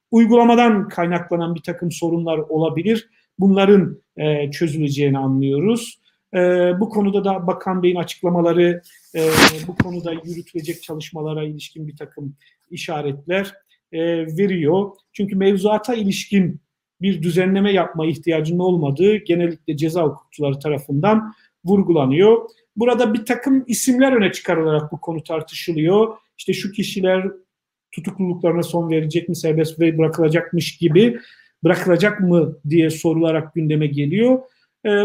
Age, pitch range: 50-69, 165-210 Hz